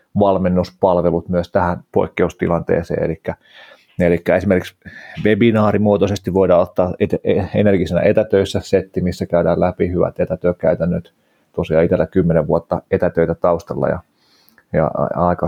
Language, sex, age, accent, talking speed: Finnish, male, 30-49, native, 105 wpm